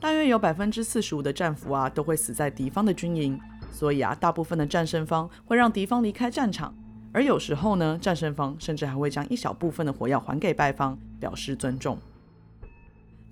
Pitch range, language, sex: 140-200 Hz, Chinese, female